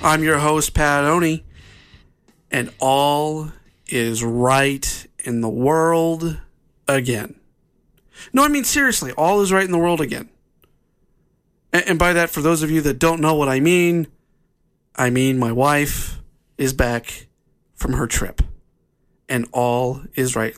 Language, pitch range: English, 120-150 Hz